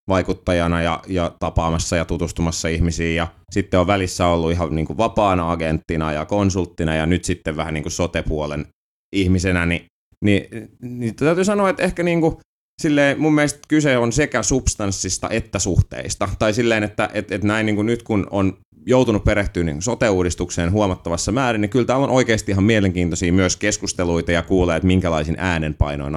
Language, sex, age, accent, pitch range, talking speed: Finnish, male, 30-49, native, 85-110 Hz, 170 wpm